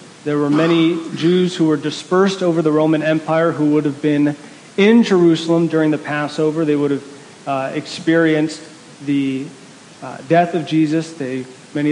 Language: English